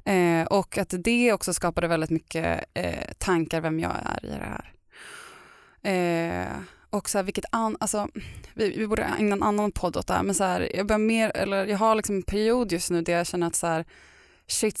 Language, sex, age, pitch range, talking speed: Swedish, female, 20-39, 160-190 Hz, 215 wpm